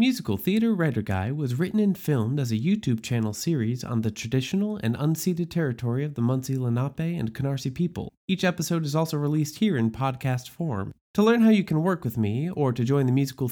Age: 30-49